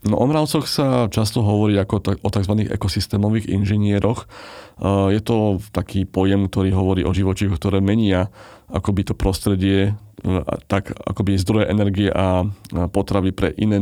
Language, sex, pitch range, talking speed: Slovak, male, 95-110 Hz, 130 wpm